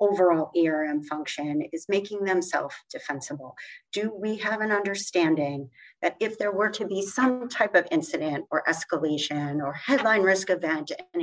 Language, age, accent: English, 40-59, American